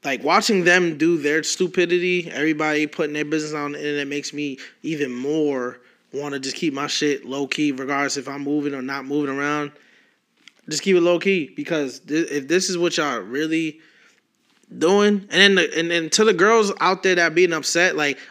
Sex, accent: male, American